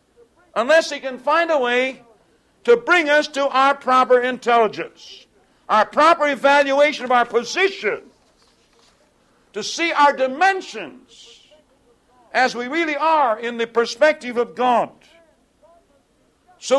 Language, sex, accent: English, male, American